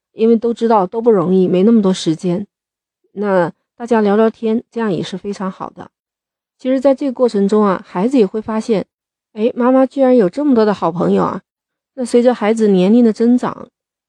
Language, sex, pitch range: Chinese, female, 190-235 Hz